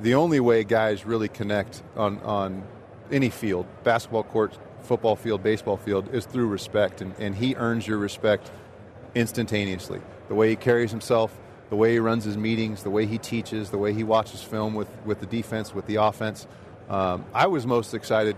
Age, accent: 30-49, American